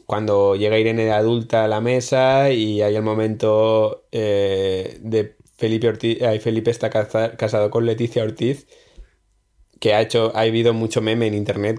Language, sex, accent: Spanish, male, Spanish